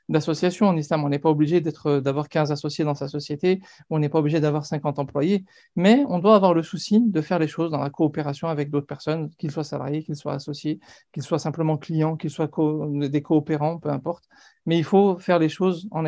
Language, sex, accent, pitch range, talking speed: French, male, French, 155-200 Hz, 220 wpm